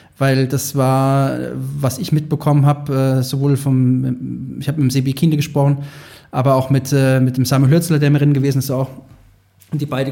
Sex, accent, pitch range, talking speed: male, German, 135-150 Hz, 190 wpm